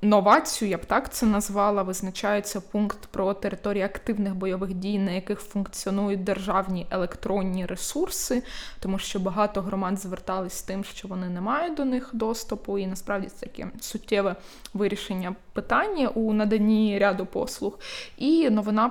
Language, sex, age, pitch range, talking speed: Ukrainian, female, 20-39, 190-220 Hz, 145 wpm